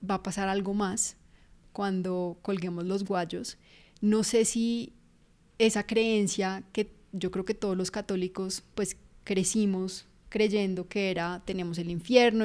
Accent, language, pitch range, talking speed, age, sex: Colombian, Spanish, 190-215 Hz, 140 wpm, 20-39, female